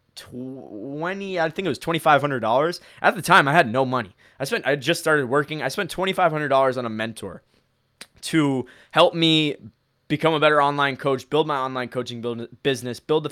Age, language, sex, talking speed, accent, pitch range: 20-39, English, male, 185 wpm, American, 130-170 Hz